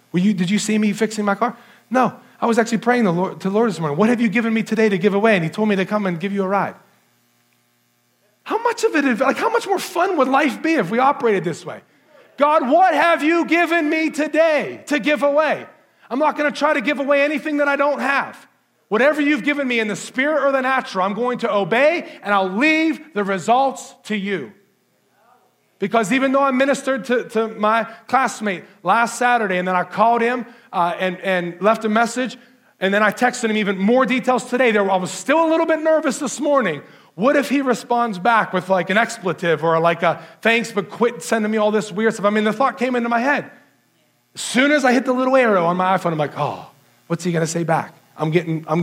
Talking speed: 230 wpm